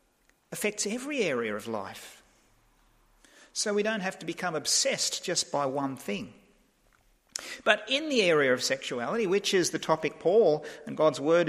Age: 50-69